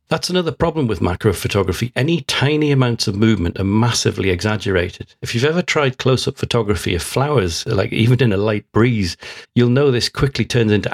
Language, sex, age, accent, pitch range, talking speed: English, male, 40-59, British, 100-125 Hz, 185 wpm